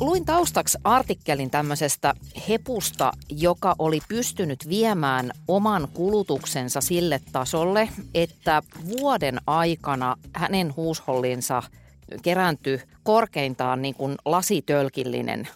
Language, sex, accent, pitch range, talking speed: Finnish, female, native, 135-180 Hz, 90 wpm